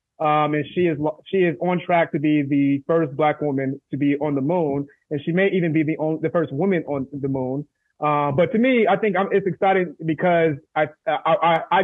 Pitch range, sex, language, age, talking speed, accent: 140-180 Hz, male, English, 30-49, 230 wpm, American